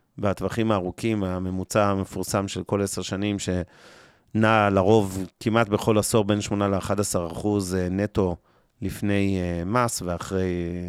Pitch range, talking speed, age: 95-115 Hz, 110 wpm, 30-49